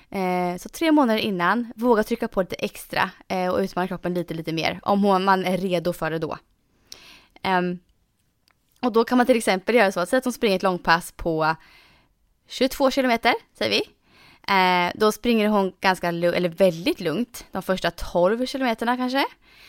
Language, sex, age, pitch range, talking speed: Swedish, female, 20-39, 175-245 Hz, 155 wpm